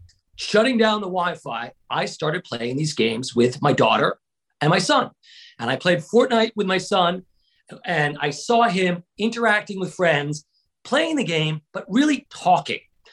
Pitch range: 165-230 Hz